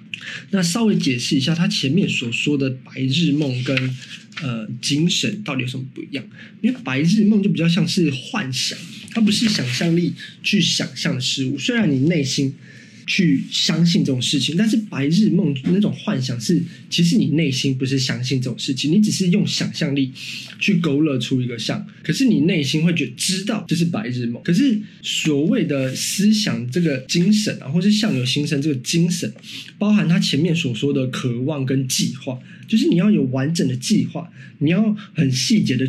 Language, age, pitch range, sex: Chinese, 20-39, 135-195 Hz, male